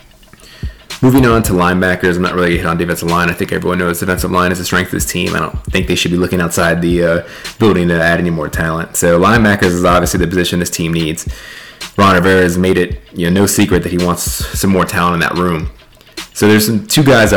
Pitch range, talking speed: 85-95 Hz, 250 wpm